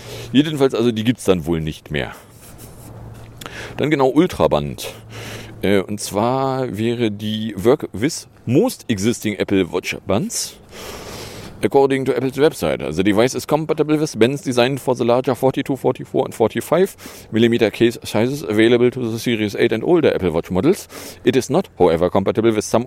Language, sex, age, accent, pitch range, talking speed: German, male, 40-59, German, 100-125 Hz, 160 wpm